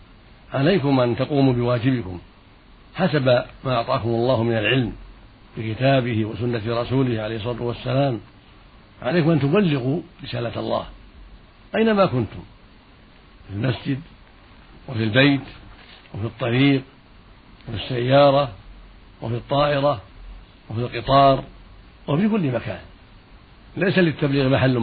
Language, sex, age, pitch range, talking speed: Arabic, male, 60-79, 110-140 Hz, 100 wpm